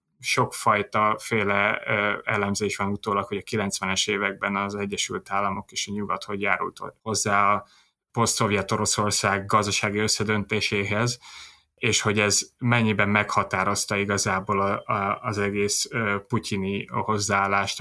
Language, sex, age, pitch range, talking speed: Hungarian, male, 20-39, 100-115 Hz, 125 wpm